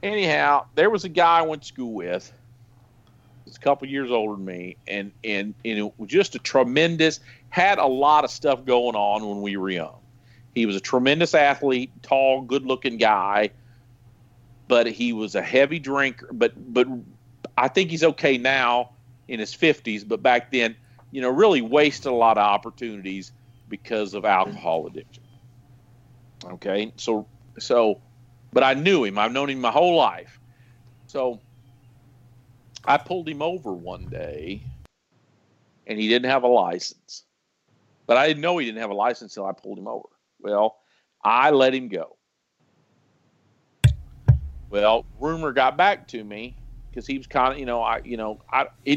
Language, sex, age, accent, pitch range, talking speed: English, male, 50-69, American, 115-135 Hz, 170 wpm